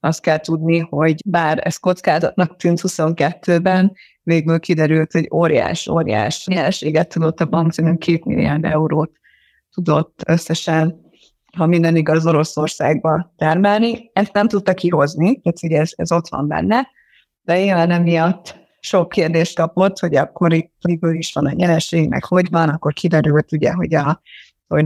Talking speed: 150 wpm